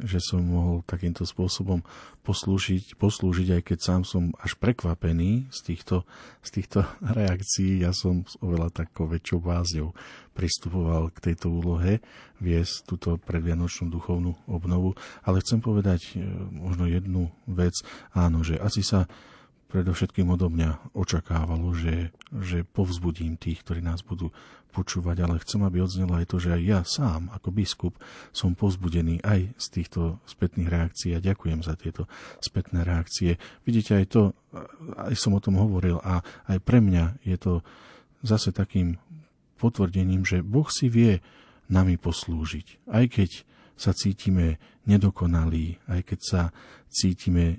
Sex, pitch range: male, 85-95 Hz